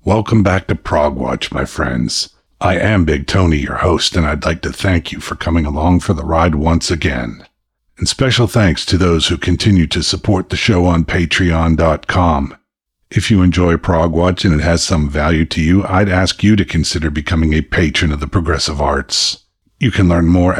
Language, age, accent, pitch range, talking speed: English, 50-69, American, 80-95 Hz, 200 wpm